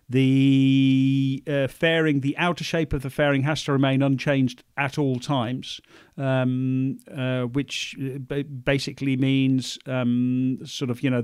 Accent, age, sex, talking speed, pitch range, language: British, 40-59, male, 140 wpm, 130-145 Hz, English